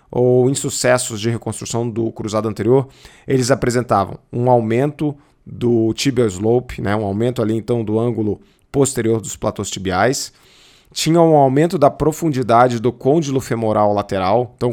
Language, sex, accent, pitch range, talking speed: English, male, Brazilian, 115-140 Hz, 145 wpm